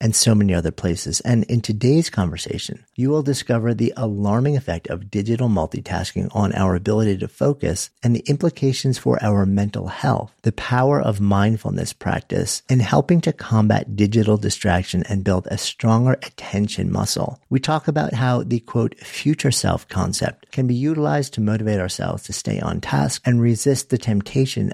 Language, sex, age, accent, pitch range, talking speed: English, male, 50-69, American, 100-130 Hz, 170 wpm